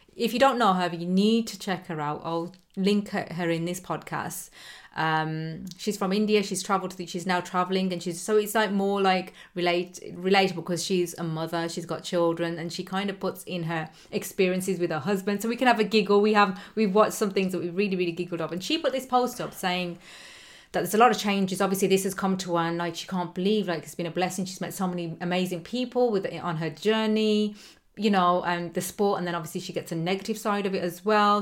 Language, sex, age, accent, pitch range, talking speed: English, female, 30-49, British, 170-200 Hz, 245 wpm